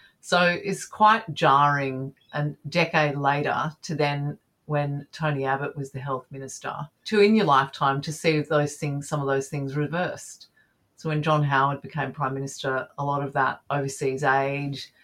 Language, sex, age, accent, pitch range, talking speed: English, female, 40-59, Australian, 135-155 Hz, 170 wpm